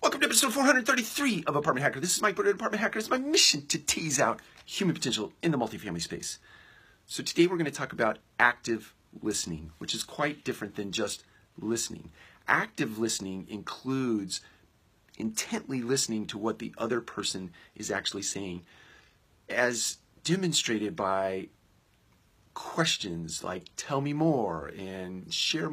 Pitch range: 95-140 Hz